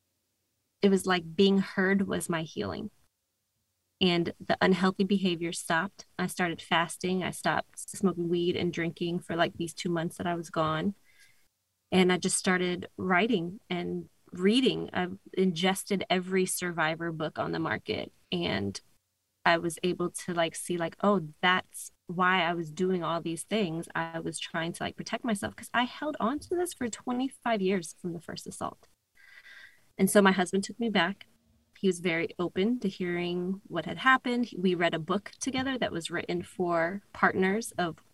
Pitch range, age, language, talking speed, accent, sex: 170-210 Hz, 20-39, English, 175 wpm, American, female